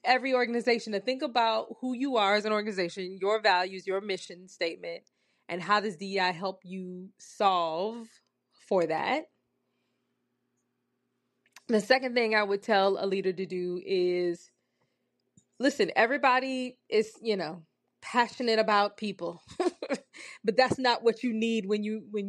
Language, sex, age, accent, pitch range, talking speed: English, female, 20-39, American, 185-230 Hz, 140 wpm